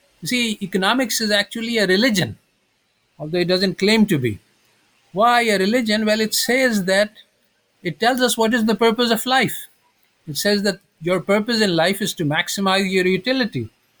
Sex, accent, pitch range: male, Indian, 145-200 Hz